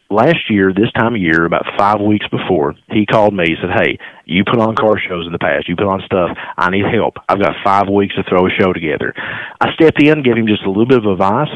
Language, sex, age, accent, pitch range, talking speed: English, male, 40-59, American, 95-120 Hz, 270 wpm